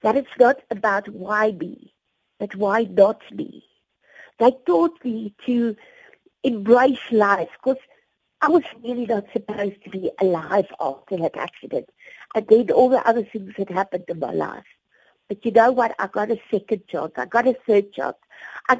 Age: 50-69